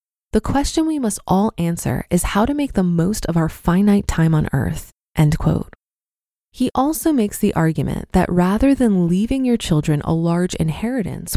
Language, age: English, 20-39